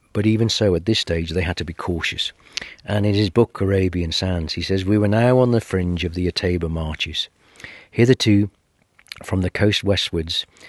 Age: 40-59